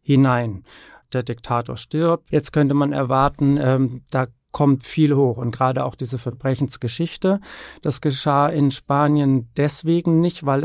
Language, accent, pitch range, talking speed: German, German, 130-155 Hz, 140 wpm